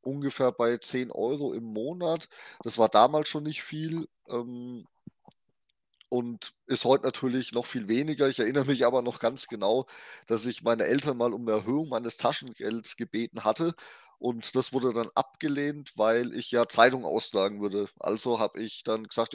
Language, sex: German, male